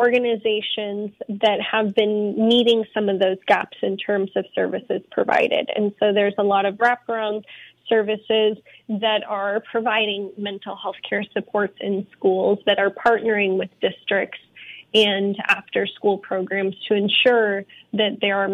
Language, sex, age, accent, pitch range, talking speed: English, female, 10-29, American, 195-215 Hz, 145 wpm